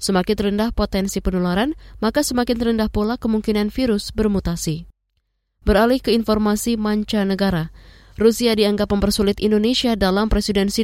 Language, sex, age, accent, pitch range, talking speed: Indonesian, female, 20-39, native, 185-225 Hz, 120 wpm